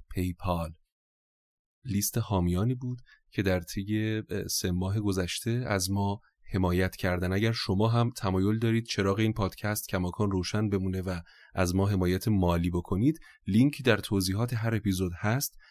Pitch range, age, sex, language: 90-110 Hz, 30-49, male, Persian